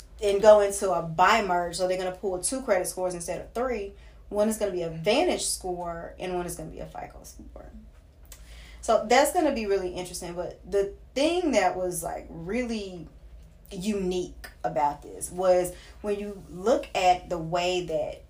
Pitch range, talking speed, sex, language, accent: 175-210 Hz, 195 wpm, female, English, American